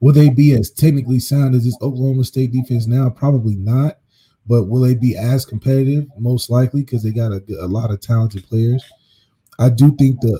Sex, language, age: male, English, 20-39